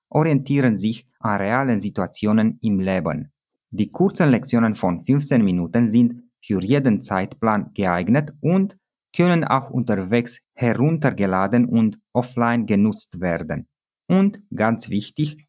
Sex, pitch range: male, 105-145 Hz